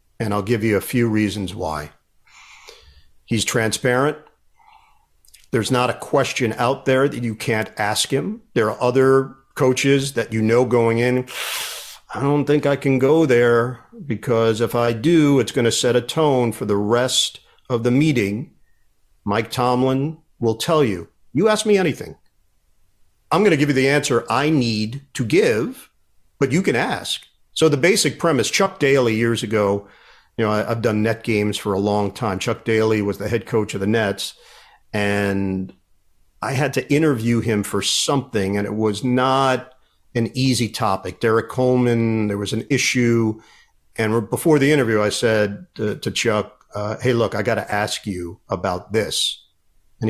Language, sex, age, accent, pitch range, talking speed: English, male, 50-69, American, 105-135 Hz, 175 wpm